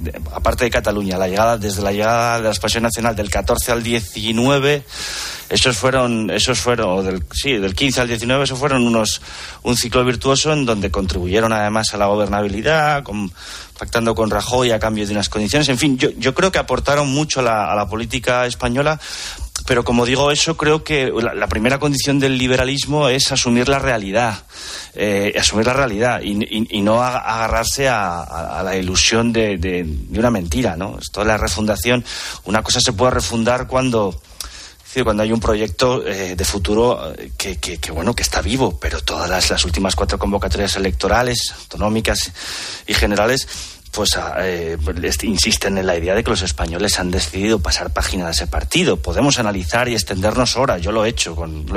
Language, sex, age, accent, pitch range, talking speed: Spanish, male, 30-49, Spanish, 95-125 Hz, 190 wpm